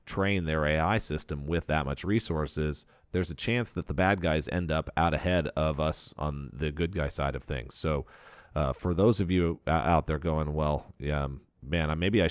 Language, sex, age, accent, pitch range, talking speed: English, male, 40-59, American, 75-90 Hz, 205 wpm